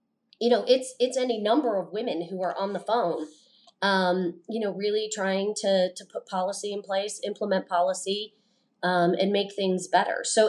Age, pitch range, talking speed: 30-49, 180-235 Hz, 185 wpm